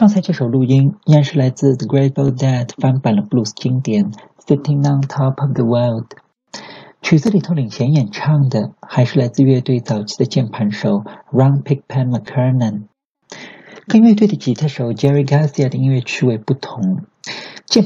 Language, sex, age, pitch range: Chinese, male, 50-69, 125-160 Hz